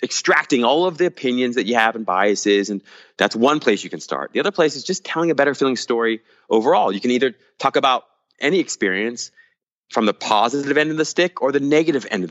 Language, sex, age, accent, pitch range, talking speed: English, male, 30-49, American, 115-155 Hz, 230 wpm